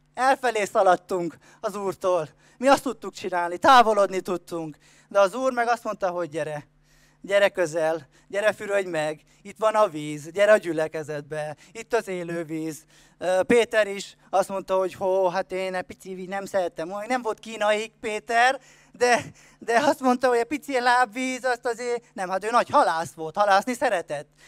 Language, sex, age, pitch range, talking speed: Hungarian, male, 20-39, 185-260 Hz, 170 wpm